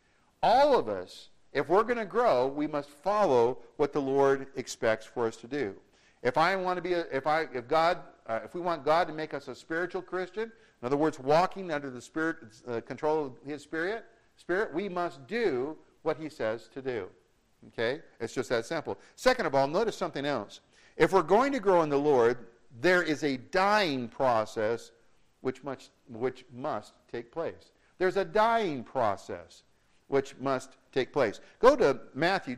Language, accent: English, American